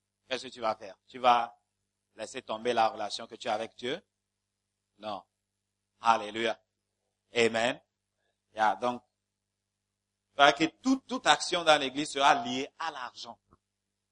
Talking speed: 140 wpm